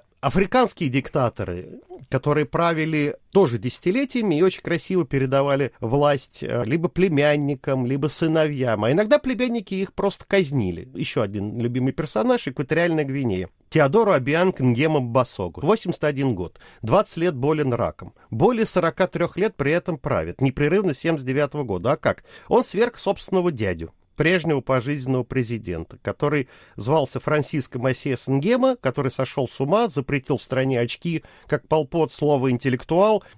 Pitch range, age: 130-180 Hz, 40-59